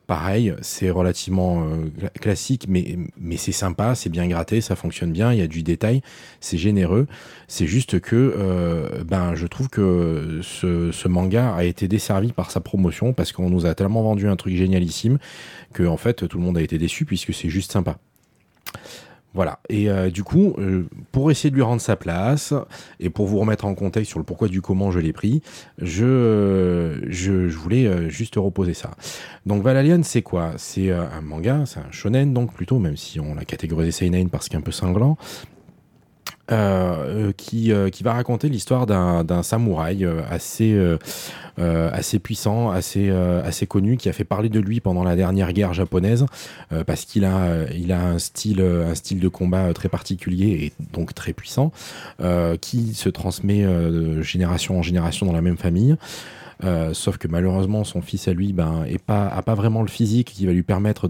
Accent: French